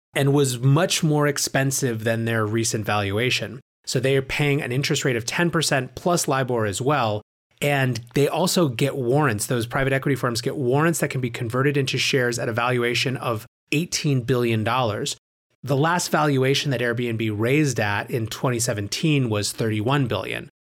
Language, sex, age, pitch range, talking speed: English, male, 30-49, 115-145 Hz, 165 wpm